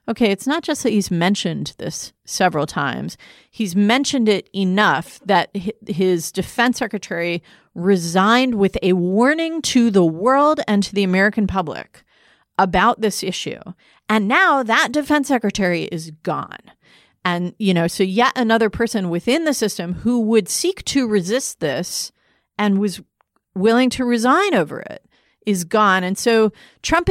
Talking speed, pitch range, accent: 150 wpm, 180-245 Hz, American